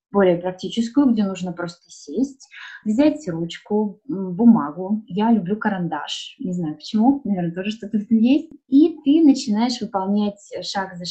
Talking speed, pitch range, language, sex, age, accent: 135 wpm, 185-235 Hz, Russian, female, 20-39, native